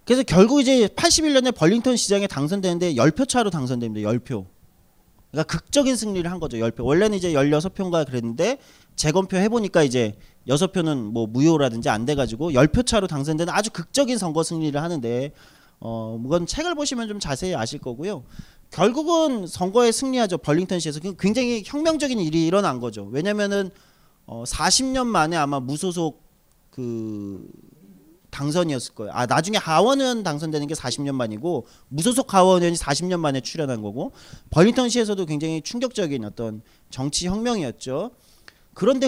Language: Korean